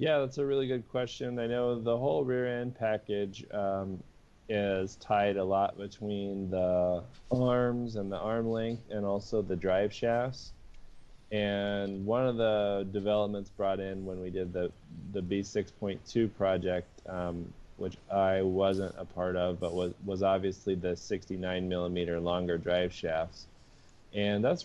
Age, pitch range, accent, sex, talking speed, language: 20-39, 95-105 Hz, American, male, 155 wpm, English